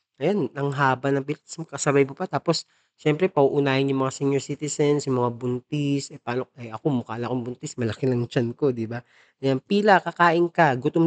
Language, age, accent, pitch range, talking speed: Filipino, 20-39, native, 130-165 Hz, 190 wpm